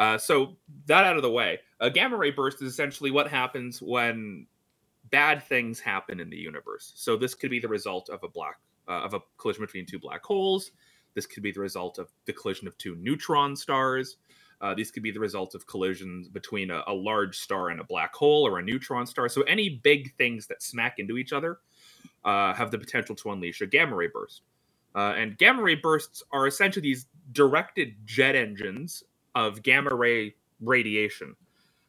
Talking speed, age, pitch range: 195 wpm, 30-49, 105-145 Hz